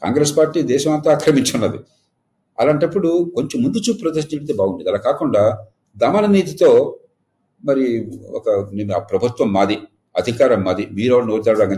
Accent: native